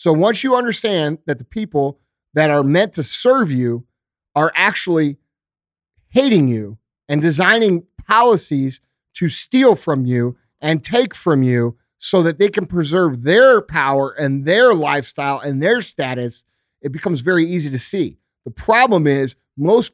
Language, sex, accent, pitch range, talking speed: English, male, American, 135-185 Hz, 155 wpm